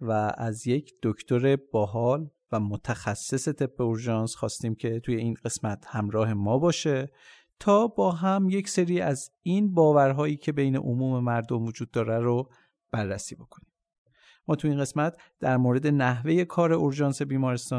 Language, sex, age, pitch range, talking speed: Persian, male, 50-69, 115-145 Hz, 145 wpm